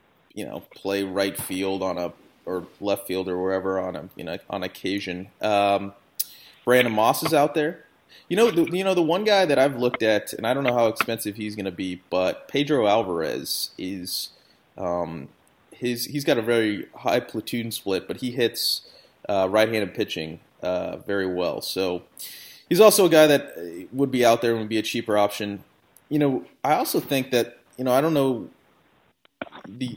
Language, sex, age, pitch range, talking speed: English, male, 20-39, 100-125 Hz, 190 wpm